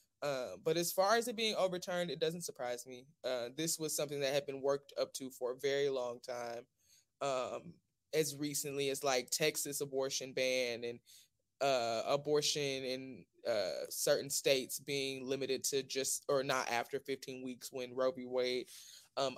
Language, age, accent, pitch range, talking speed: English, 20-39, American, 130-150 Hz, 175 wpm